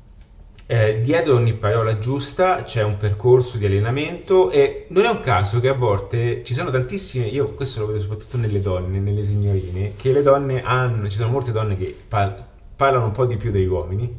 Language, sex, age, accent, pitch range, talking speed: Italian, male, 30-49, native, 100-125 Hz, 200 wpm